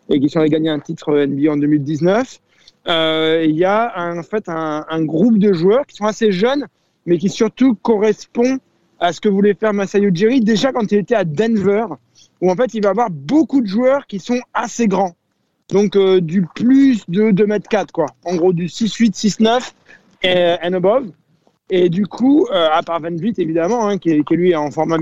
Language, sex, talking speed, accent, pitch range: French, male, 215 wpm, French, 175-225 Hz